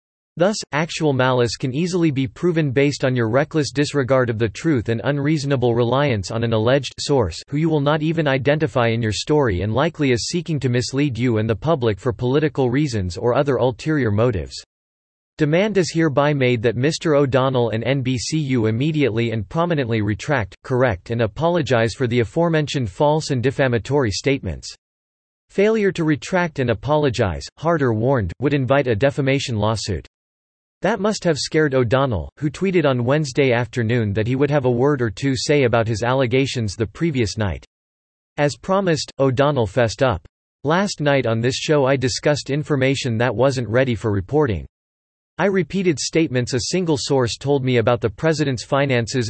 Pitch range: 115-150 Hz